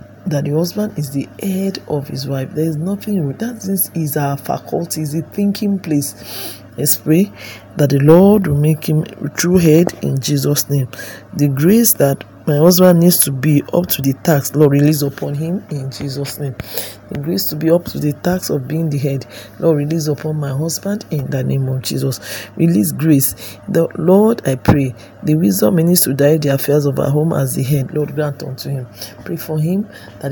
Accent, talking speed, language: Nigerian, 200 wpm, English